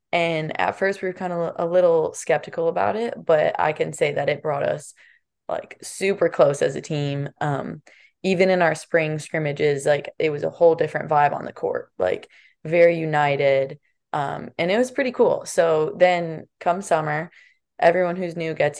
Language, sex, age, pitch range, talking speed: English, female, 20-39, 150-190 Hz, 190 wpm